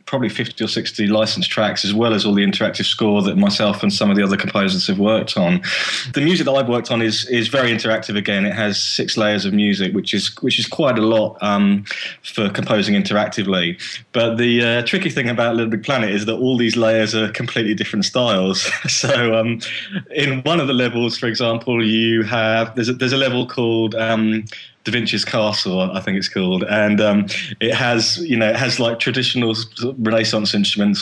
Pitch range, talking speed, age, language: 105-115 Hz, 205 wpm, 20-39, English